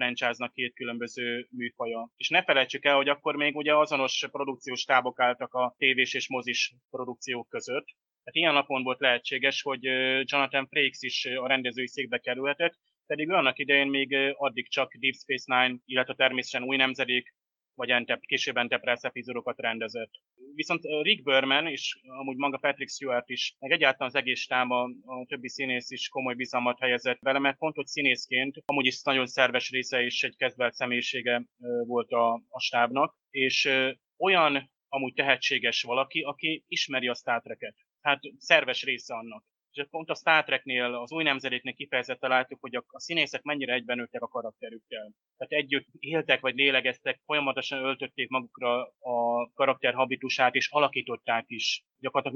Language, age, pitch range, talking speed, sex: Hungarian, 30-49, 125-140 Hz, 155 wpm, male